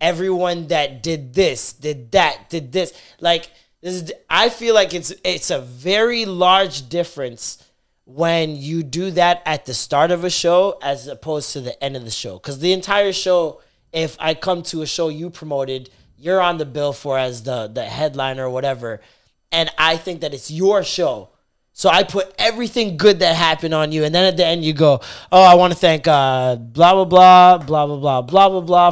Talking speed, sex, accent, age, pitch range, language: 205 wpm, male, American, 20-39, 140-185 Hz, English